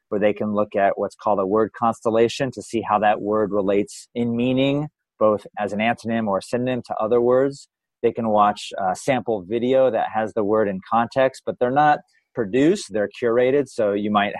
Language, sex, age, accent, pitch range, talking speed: English, male, 30-49, American, 105-125 Hz, 205 wpm